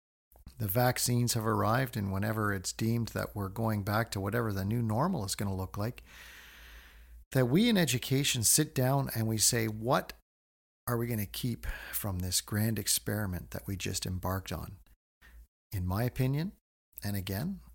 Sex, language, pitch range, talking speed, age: male, English, 95-125 Hz, 170 wpm, 50-69